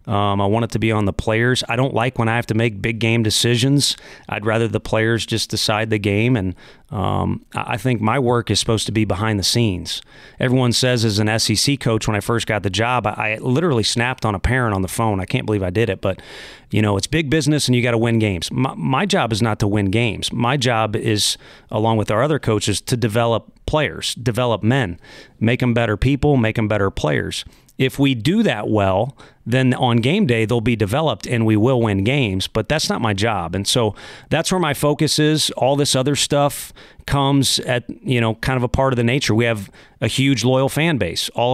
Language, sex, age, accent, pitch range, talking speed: English, male, 30-49, American, 105-130 Hz, 235 wpm